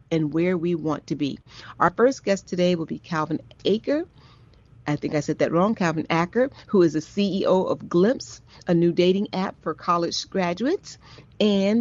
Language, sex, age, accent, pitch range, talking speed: English, female, 40-59, American, 155-185 Hz, 185 wpm